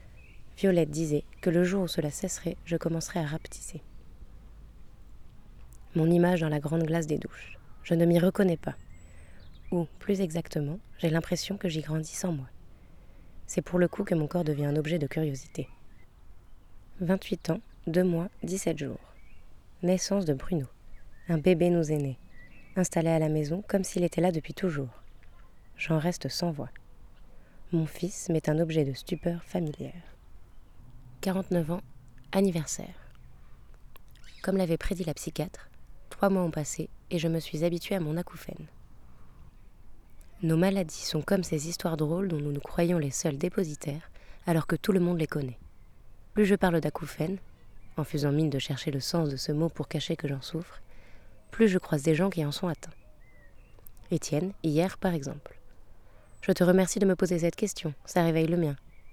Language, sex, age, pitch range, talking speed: French, female, 20-39, 130-175 Hz, 170 wpm